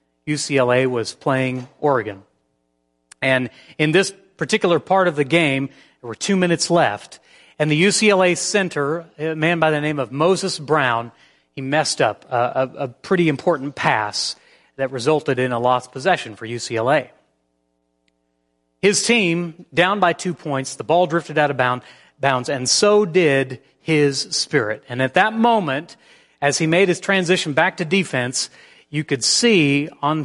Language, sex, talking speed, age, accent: English, male, 155 wpm, 40-59, American